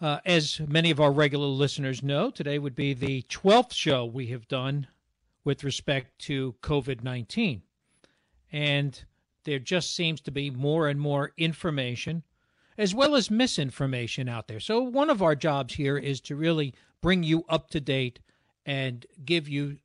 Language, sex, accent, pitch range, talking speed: English, male, American, 135-170 Hz, 165 wpm